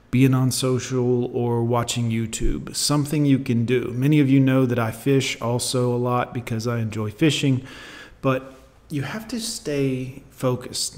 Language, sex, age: English, male, 40-59